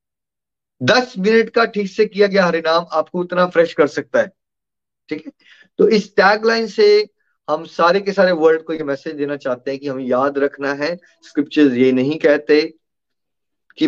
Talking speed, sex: 175 wpm, male